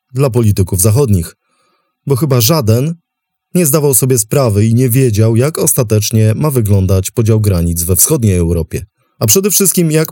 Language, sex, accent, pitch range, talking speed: English, male, Polish, 110-155 Hz, 155 wpm